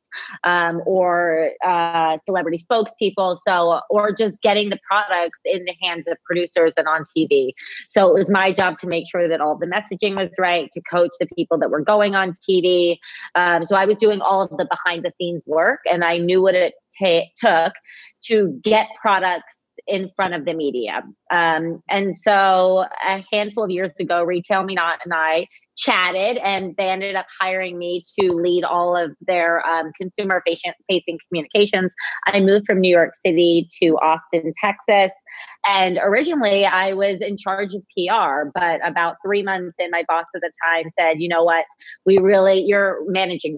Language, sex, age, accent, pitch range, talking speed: English, female, 30-49, American, 165-190 Hz, 180 wpm